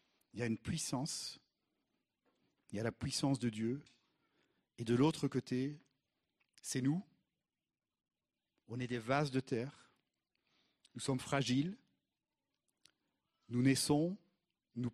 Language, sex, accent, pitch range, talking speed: French, male, French, 120-160 Hz, 120 wpm